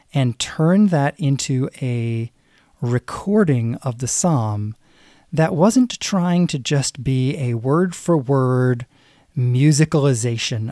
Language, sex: English, male